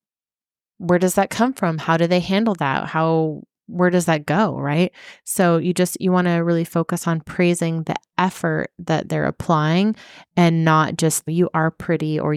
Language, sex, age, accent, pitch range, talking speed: English, female, 20-39, American, 165-190 Hz, 185 wpm